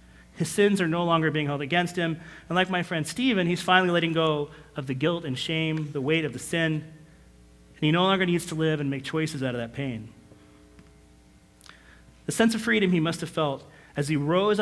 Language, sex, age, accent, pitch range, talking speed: English, male, 30-49, American, 110-165 Hz, 220 wpm